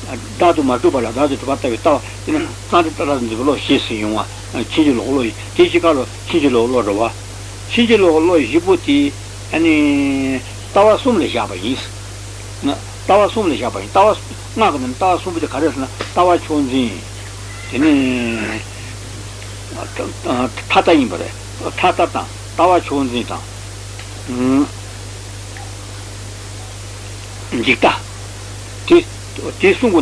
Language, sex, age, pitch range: Italian, male, 60-79, 100-130 Hz